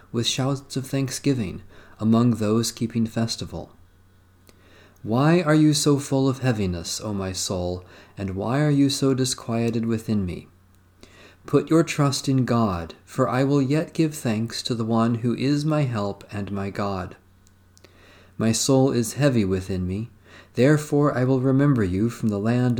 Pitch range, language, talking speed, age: 95-130 Hz, English, 160 wpm, 40-59